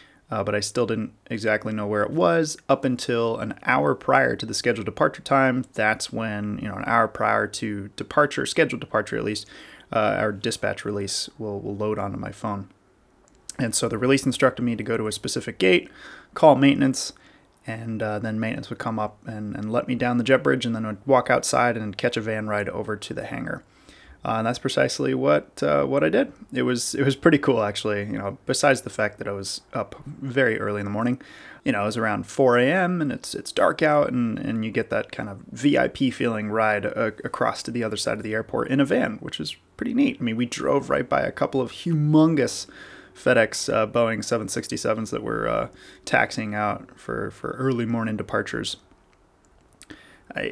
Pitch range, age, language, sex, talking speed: 105-130 Hz, 20-39, English, male, 215 wpm